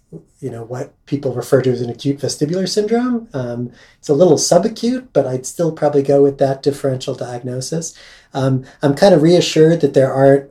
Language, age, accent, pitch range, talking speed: English, 30-49, American, 130-150 Hz, 190 wpm